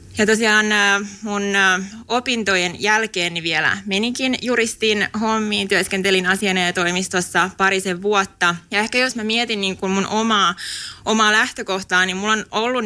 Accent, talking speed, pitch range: native, 135 wpm, 180-215 Hz